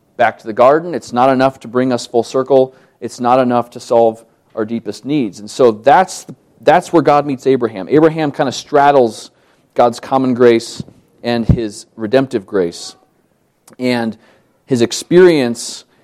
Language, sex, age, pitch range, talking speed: English, male, 40-59, 105-130 Hz, 160 wpm